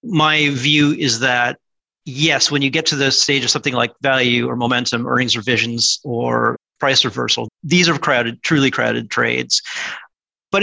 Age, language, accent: 30-49, English, American